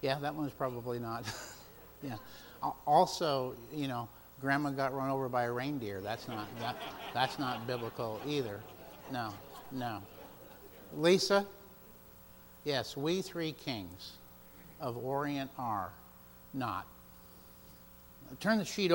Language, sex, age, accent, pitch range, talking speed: English, male, 60-79, American, 115-155 Hz, 115 wpm